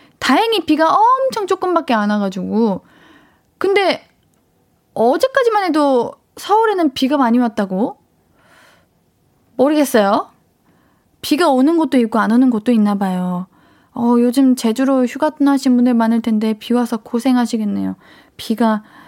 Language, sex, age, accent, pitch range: Korean, female, 20-39, native, 230-340 Hz